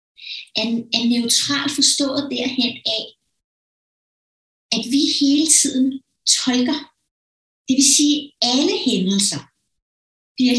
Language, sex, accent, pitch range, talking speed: Danish, female, native, 230-285 Hz, 95 wpm